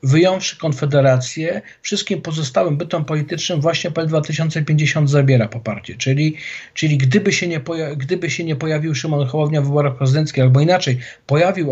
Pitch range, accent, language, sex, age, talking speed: 135-165 Hz, native, Polish, male, 50-69, 150 wpm